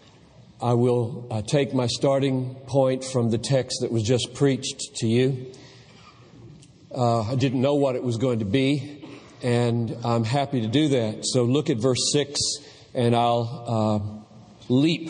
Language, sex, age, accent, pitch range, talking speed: English, male, 40-59, American, 125-155 Hz, 165 wpm